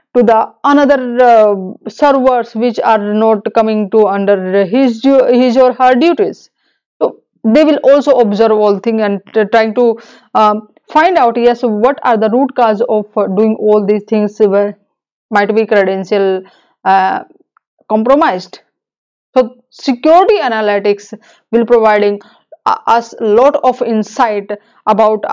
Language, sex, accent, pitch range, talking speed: English, female, Indian, 210-265 Hz, 135 wpm